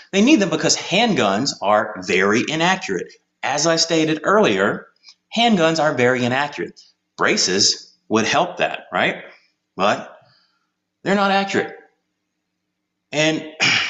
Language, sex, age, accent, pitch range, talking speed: English, male, 30-49, American, 110-170 Hz, 110 wpm